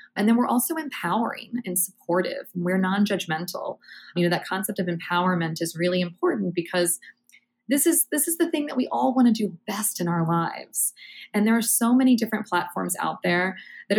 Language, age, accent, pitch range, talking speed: English, 20-39, American, 175-225 Hz, 195 wpm